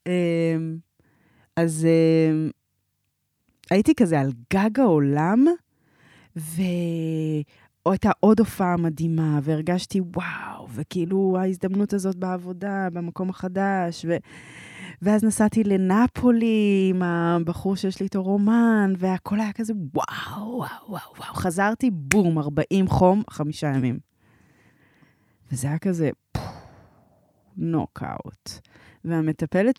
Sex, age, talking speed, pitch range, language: female, 20-39, 90 wpm, 150-190 Hz, Hebrew